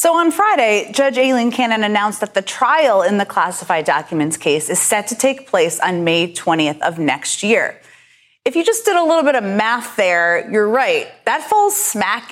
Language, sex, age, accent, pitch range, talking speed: English, female, 30-49, American, 185-275 Hz, 200 wpm